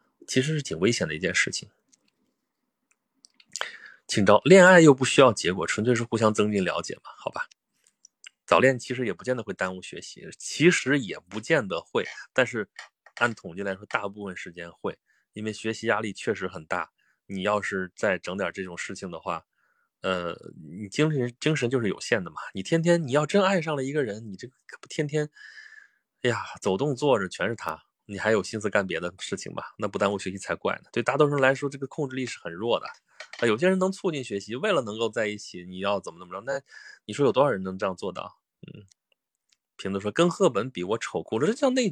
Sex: male